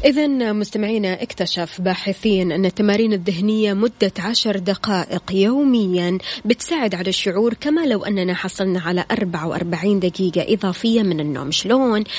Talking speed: 125 wpm